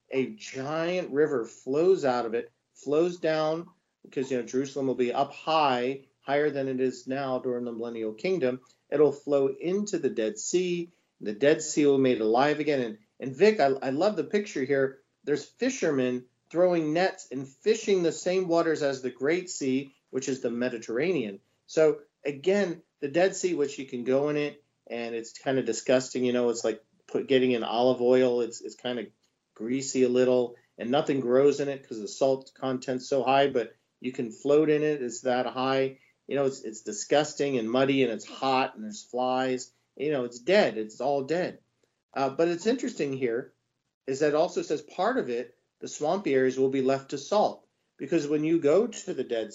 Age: 40-59